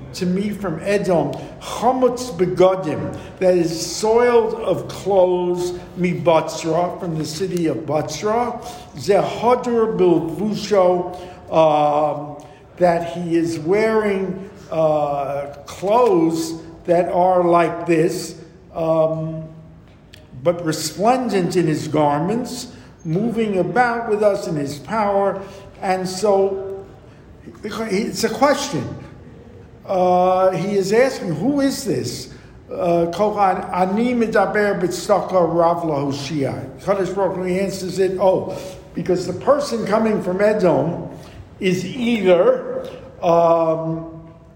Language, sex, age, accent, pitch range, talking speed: English, male, 50-69, American, 165-200 Hz, 95 wpm